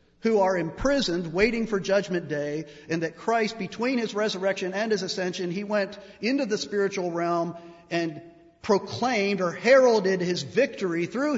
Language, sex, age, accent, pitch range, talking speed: English, male, 50-69, American, 145-195 Hz, 155 wpm